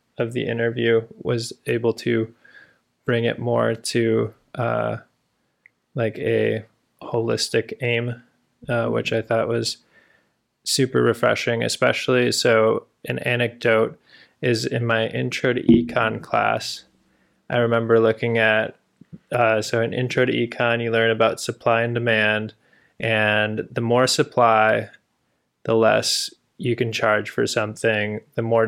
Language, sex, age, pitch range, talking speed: English, male, 20-39, 110-120 Hz, 130 wpm